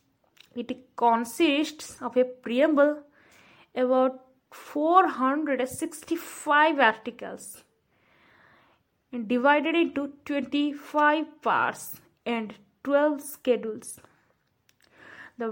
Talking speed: 75 wpm